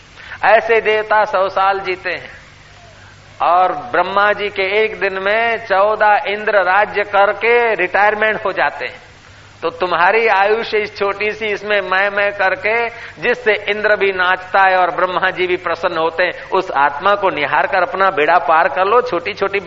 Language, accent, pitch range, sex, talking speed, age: Hindi, native, 150-190 Hz, male, 160 wpm, 50-69